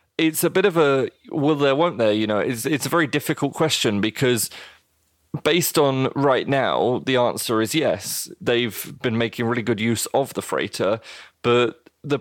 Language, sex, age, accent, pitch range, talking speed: English, male, 30-49, British, 105-125 Hz, 180 wpm